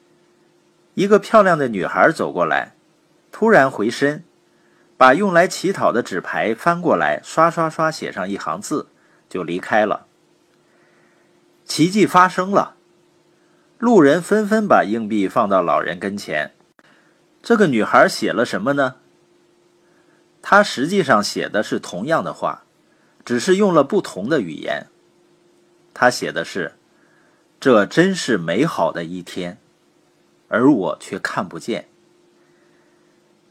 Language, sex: Chinese, male